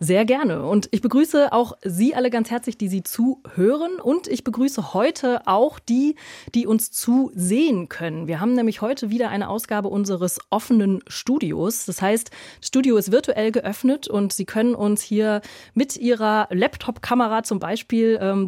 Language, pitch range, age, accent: German, 200-255 Hz, 30-49, German